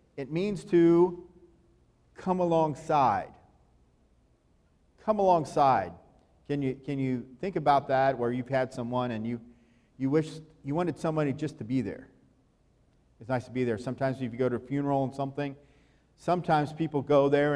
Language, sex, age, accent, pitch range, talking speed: English, male, 50-69, American, 120-150 Hz, 160 wpm